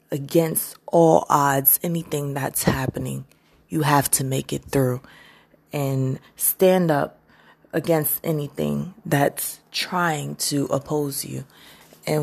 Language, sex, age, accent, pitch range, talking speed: English, female, 20-39, American, 130-155 Hz, 115 wpm